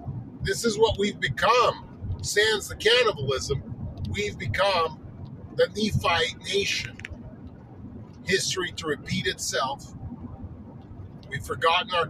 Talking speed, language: 100 wpm, English